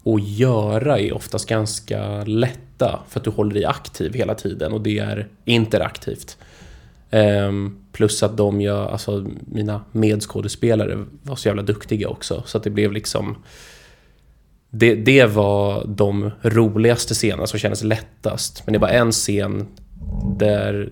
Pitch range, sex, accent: 100-110 Hz, male, native